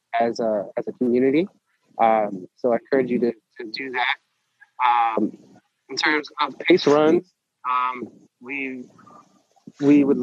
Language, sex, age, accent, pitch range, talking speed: English, male, 20-39, American, 115-135 Hz, 140 wpm